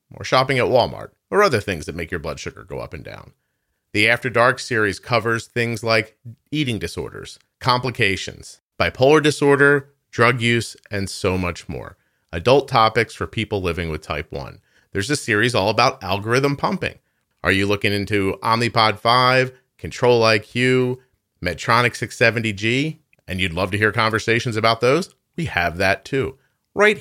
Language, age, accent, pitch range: English, 40-59, American, 100-130 Hz